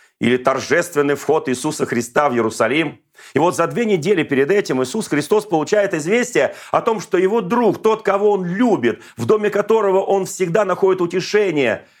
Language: Russian